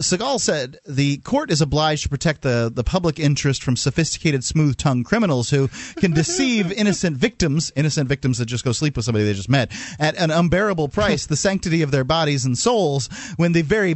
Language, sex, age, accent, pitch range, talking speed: English, male, 30-49, American, 125-170 Hz, 200 wpm